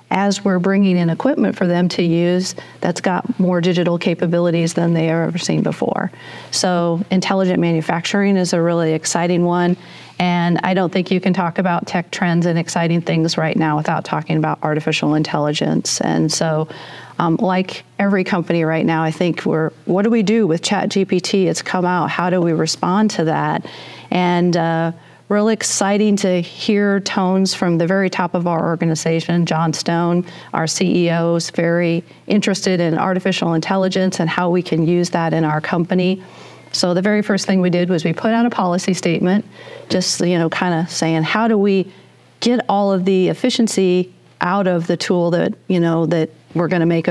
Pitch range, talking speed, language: 165-190 Hz, 185 wpm, English